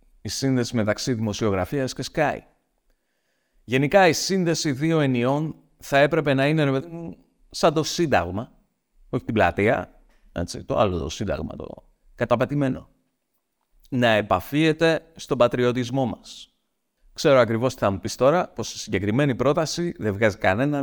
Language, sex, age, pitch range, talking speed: Greek, male, 50-69, 125-180 Hz, 135 wpm